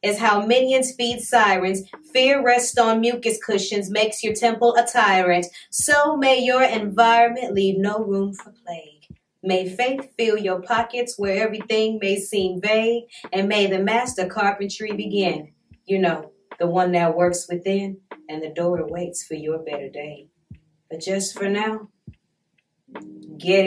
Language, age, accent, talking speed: English, 20-39, American, 150 wpm